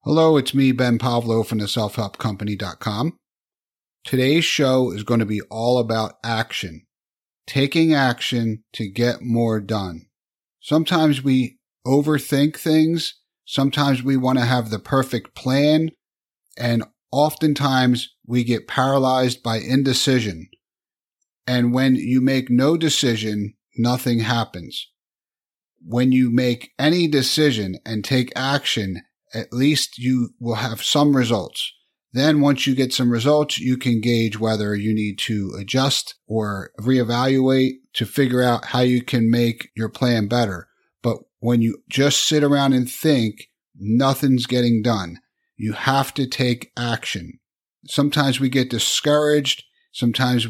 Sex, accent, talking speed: male, American, 135 wpm